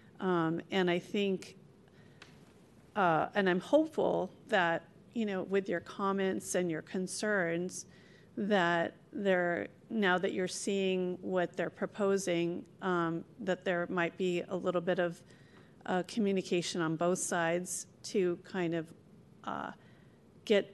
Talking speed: 130 wpm